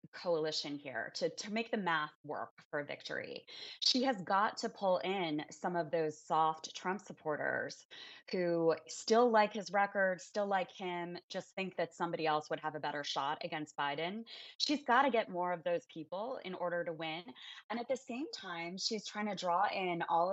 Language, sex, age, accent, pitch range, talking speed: English, female, 20-39, American, 160-190 Hz, 190 wpm